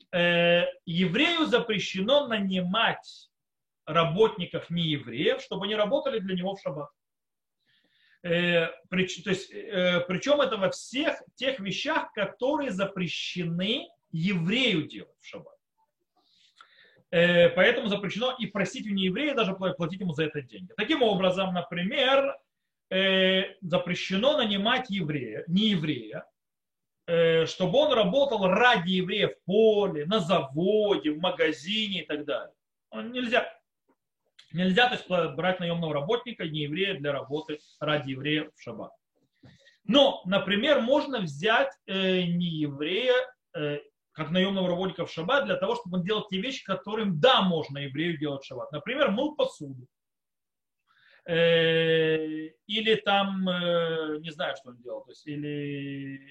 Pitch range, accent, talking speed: 165-220 Hz, native, 125 wpm